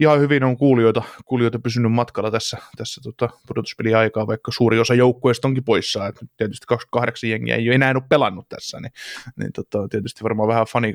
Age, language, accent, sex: 20-39, Finnish, native, male